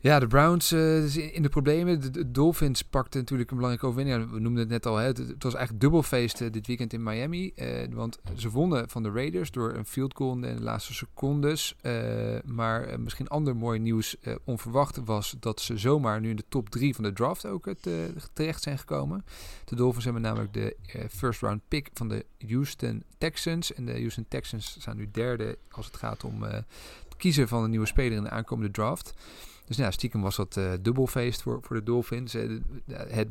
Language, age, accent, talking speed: Dutch, 40-59, Dutch, 215 wpm